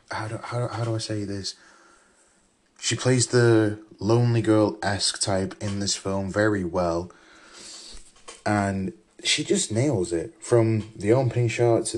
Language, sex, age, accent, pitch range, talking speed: English, male, 20-39, British, 95-115 Hz, 135 wpm